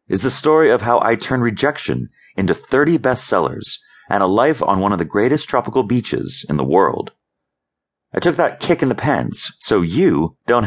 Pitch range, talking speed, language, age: 105-175 Hz, 190 wpm, English, 30-49